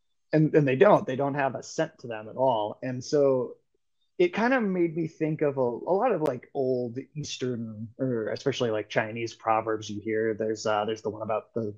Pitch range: 115-145 Hz